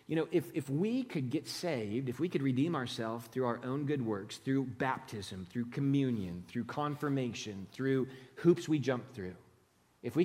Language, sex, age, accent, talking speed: English, male, 40-59, American, 180 wpm